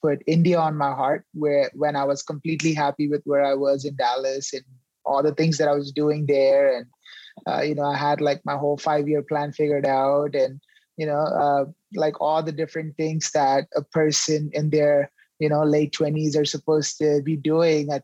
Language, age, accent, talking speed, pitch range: English, 20-39, Indian, 210 wpm, 145-160 Hz